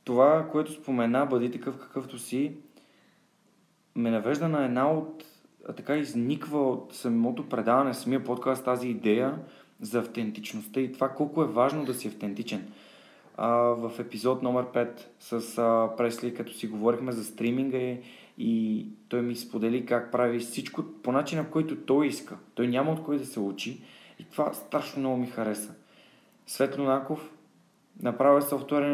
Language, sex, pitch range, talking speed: Bulgarian, male, 120-150 Hz, 150 wpm